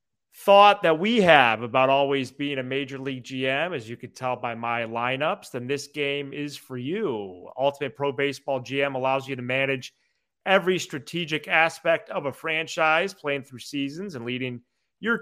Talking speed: 175 wpm